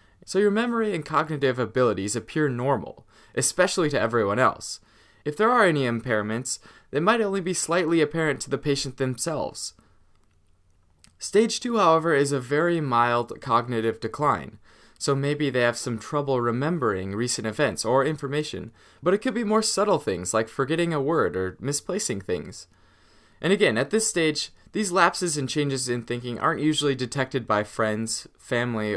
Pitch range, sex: 115-160 Hz, male